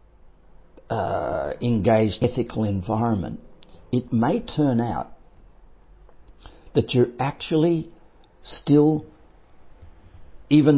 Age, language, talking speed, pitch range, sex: 60-79, English, 70 wpm, 110-150 Hz, male